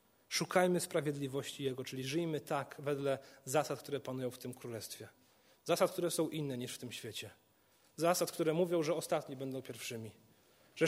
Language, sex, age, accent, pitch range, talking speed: Polish, male, 40-59, native, 130-180 Hz, 160 wpm